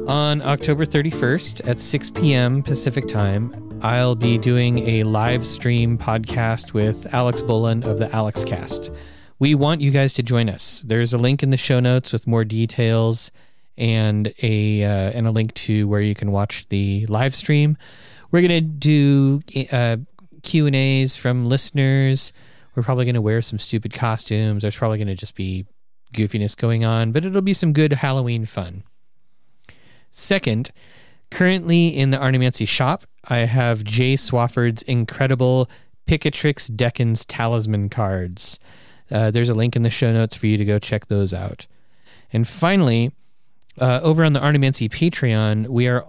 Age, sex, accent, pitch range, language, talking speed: 30-49, male, American, 110-135 Hz, English, 165 wpm